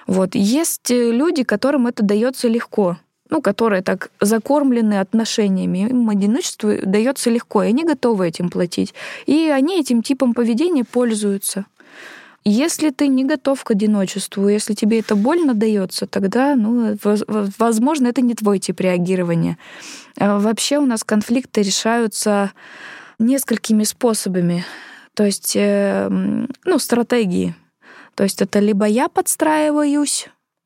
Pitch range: 205-260 Hz